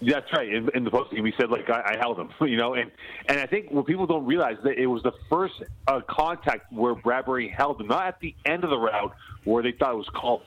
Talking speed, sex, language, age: 280 wpm, male, English, 40-59